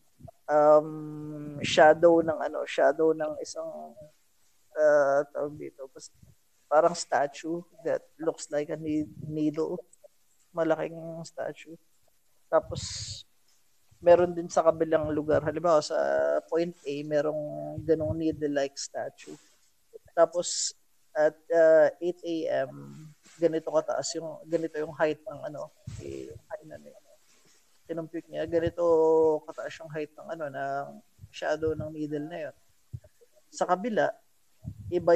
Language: Filipino